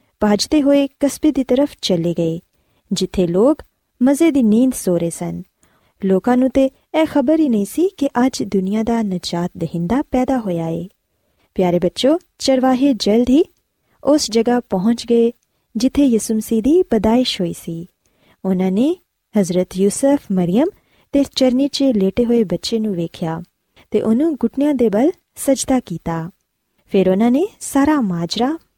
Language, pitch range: Punjabi, 185-270 Hz